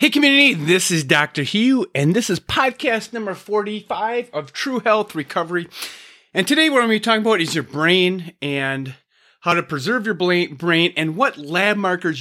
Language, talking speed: English, 185 wpm